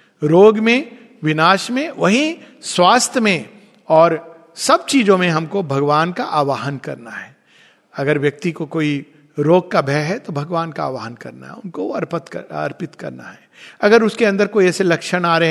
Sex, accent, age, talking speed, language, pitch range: male, native, 50-69, 175 wpm, Hindi, 155-225 Hz